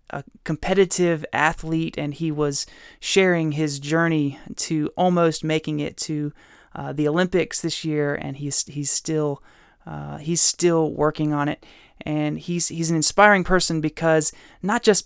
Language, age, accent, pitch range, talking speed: English, 20-39, American, 150-180 Hz, 150 wpm